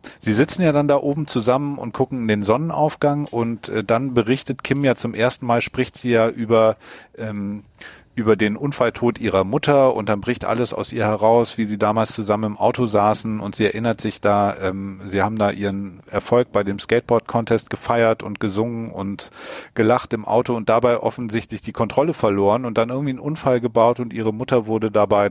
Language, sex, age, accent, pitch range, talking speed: German, male, 40-59, German, 105-130 Hz, 200 wpm